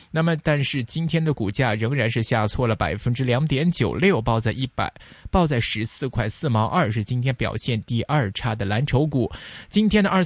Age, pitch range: 20-39, 110-155 Hz